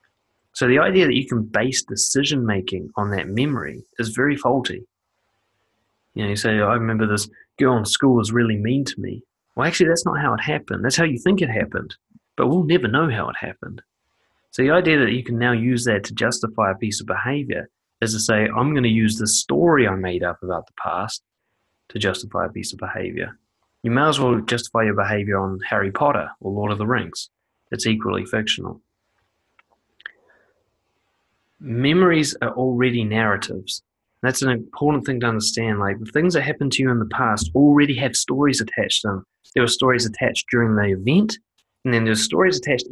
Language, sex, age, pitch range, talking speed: English, male, 20-39, 110-135 Hz, 195 wpm